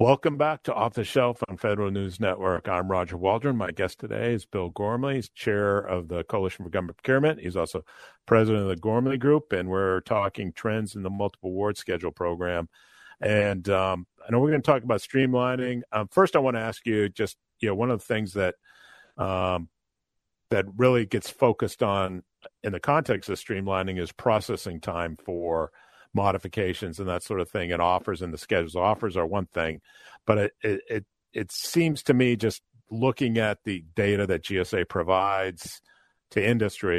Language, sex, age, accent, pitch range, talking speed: English, male, 50-69, American, 90-120 Hz, 190 wpm